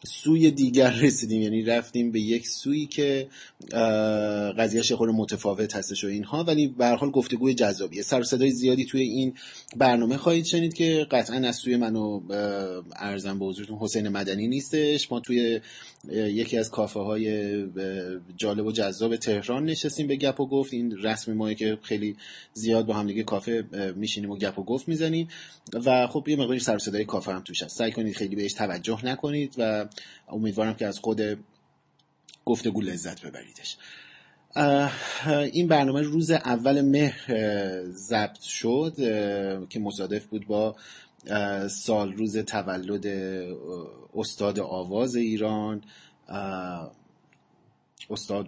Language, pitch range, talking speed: Persian, 100-130 Hz, 135 wpm